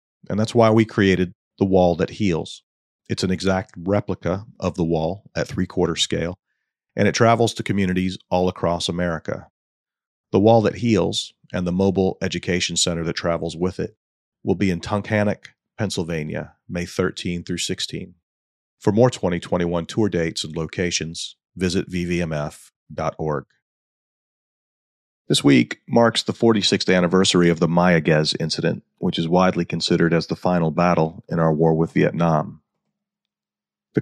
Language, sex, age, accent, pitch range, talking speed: English, male, 40-59, American, 85-100 Hz, 145 wpm